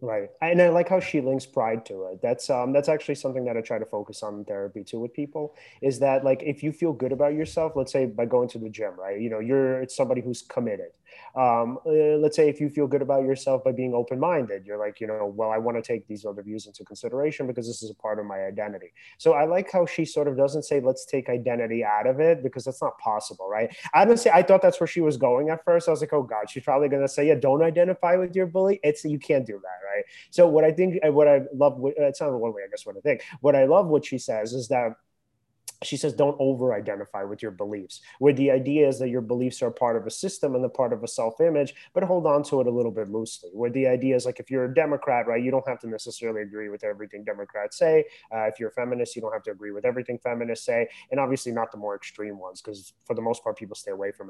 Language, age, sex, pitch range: English, 30-49, male, 115-150 Hz